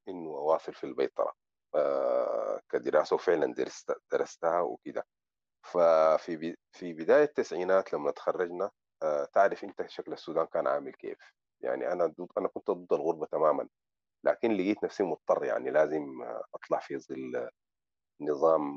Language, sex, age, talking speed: Arabic, male, 40-59, 135 wpm